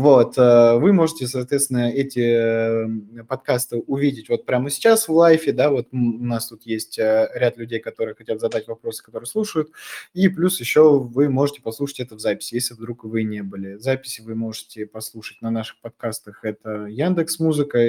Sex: male